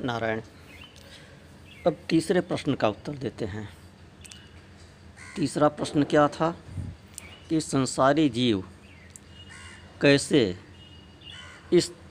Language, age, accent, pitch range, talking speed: Hindi, 60-79, native, 95-150 Hz, 85 wpm